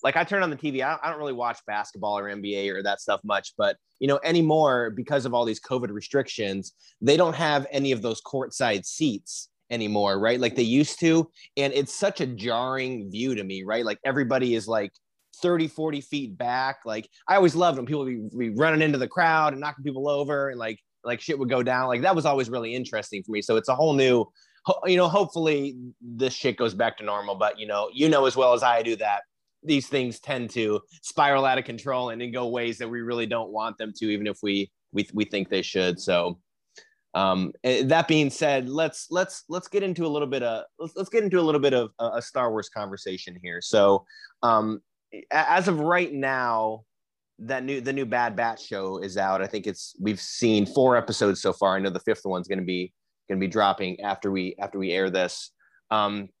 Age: 30-49